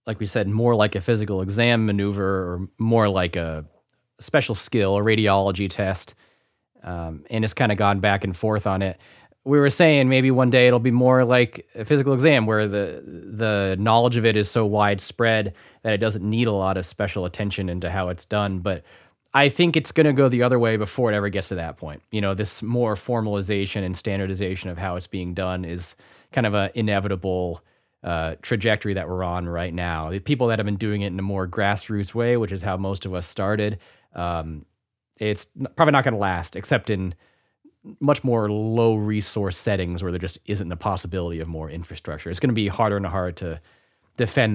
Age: 20-39